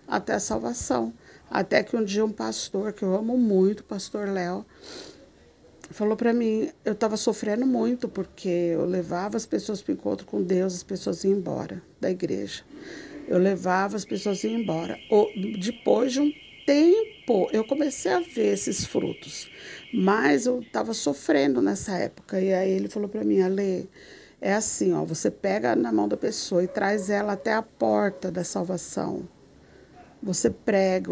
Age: 50-69